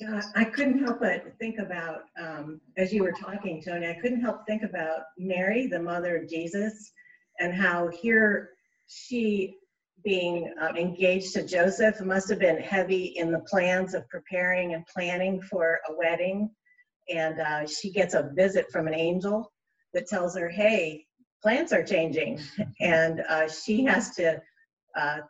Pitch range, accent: 165-210 Hz, American